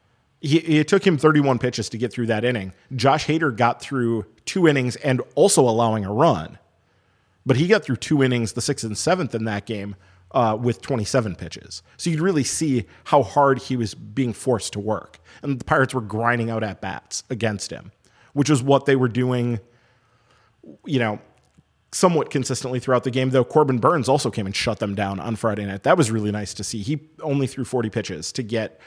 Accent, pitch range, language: American, 110-135 Hz, English